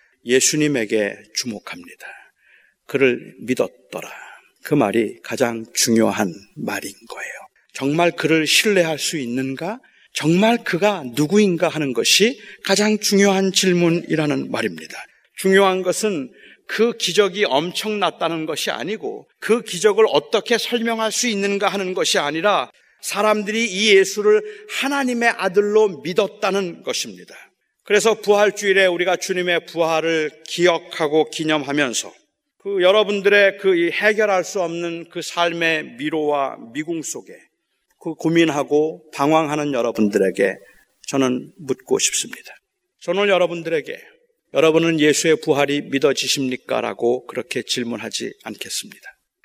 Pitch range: 150-210 Hz